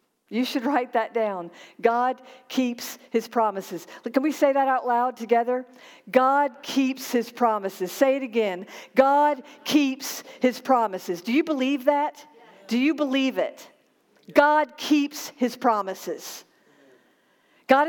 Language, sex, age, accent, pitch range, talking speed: English, female, 50-69, American, 235-285 Hz, 135 wpm